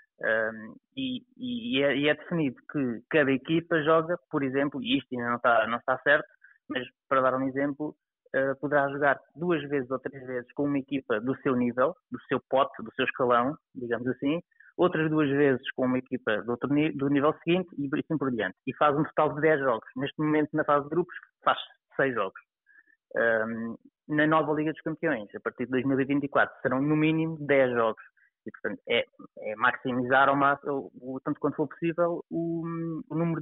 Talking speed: 195 wpm